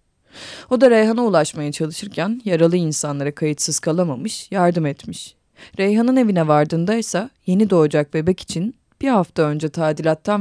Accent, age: native, 30-49